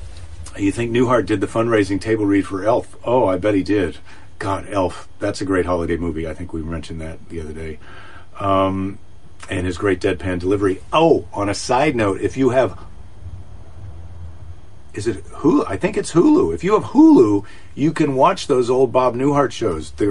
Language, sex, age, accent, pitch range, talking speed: English, male, 40-59, American, 90-135 Hz, 190 wpm